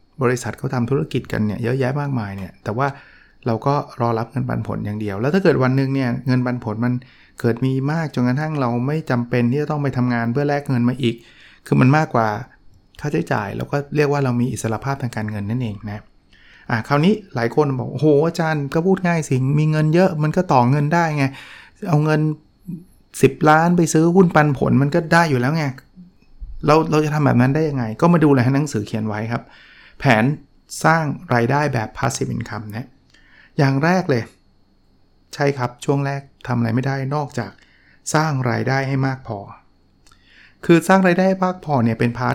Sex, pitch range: male, 115-150 Hz